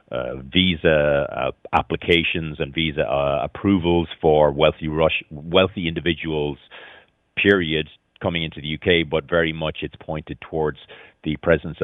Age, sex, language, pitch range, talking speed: 40-59, male, English, 75-85 Hz, 130 wpm